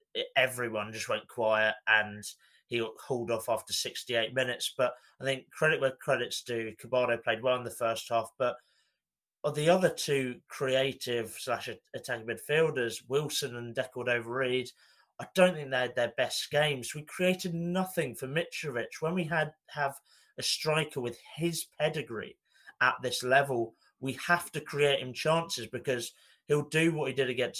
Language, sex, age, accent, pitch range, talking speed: English, male, 30-49, British, 120-150 Hz, 165 wpm